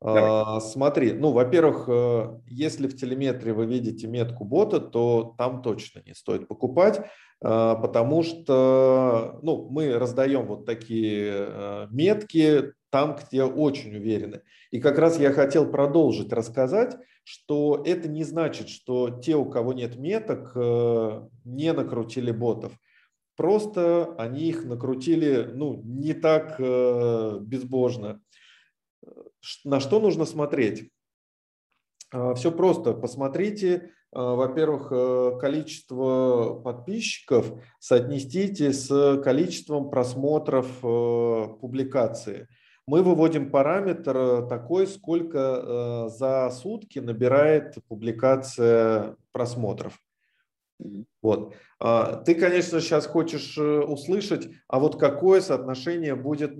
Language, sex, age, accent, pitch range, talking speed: Russian, male, 40-59, native, 120-155 Hz, 95 wpm